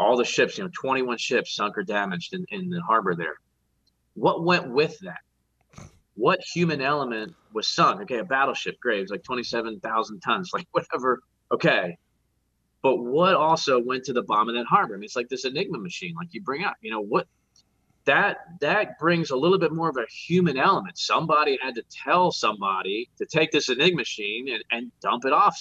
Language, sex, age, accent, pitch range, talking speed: English, male, 30-49, American, 100-165 Hz, 195 wpm